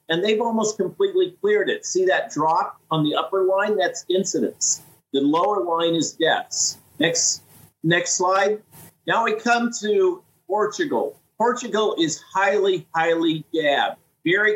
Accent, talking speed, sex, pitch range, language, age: American, 140 wpm, male, 160-215 Hz, English, 50-69